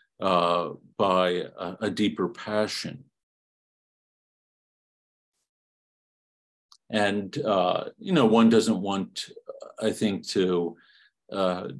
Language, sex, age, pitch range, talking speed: English, male, 50-69, 95-125 Hz, 85 wpm